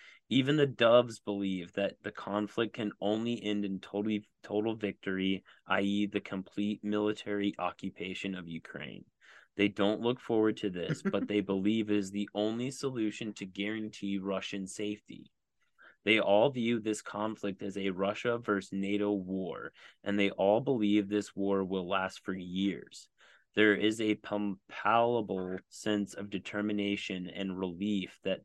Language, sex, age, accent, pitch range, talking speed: English, male, 30-49, American, 95-105 Hz, 145 wpm